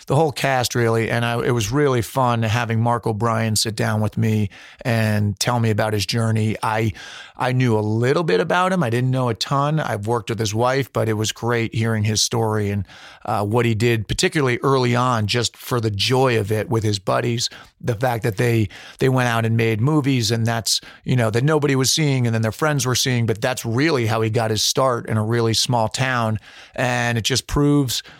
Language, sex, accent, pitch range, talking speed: English, male, American, 110-135 Hz, 225 wpm